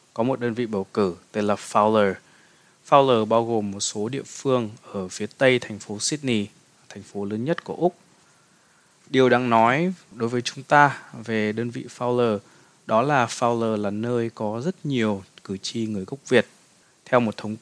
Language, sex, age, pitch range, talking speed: Vietnamese, male, 20-39, 105-130 Hz, 185 wpm